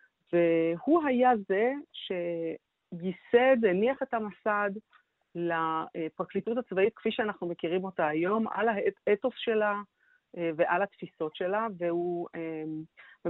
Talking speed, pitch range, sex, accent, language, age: 95 wpm, 165-215 Hz, female, native, Hebrew, 40-59